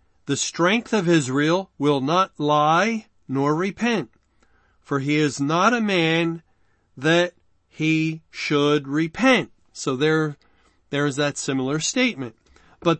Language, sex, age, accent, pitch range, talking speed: English, male, 40-59, American, 140-185 Hz, 125 wpm